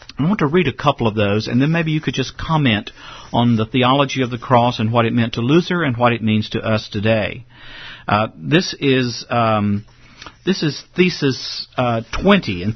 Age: 50-69